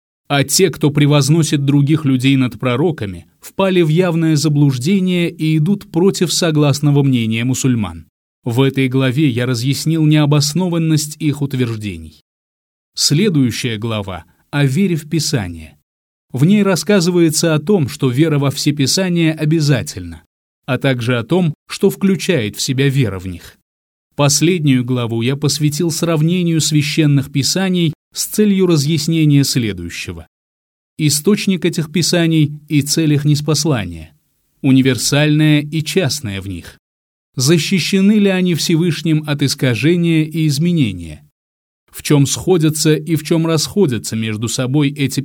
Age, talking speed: 20-39, 125 wpm